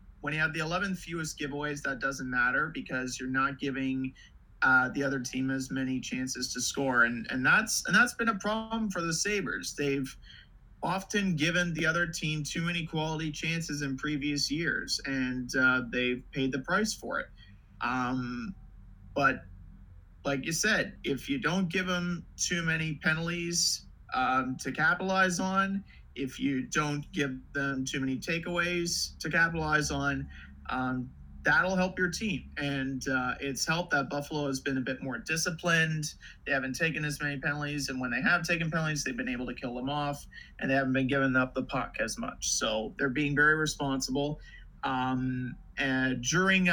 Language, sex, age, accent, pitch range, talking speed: English, male, 30-49, American, 130-165 Hz, 175 wpm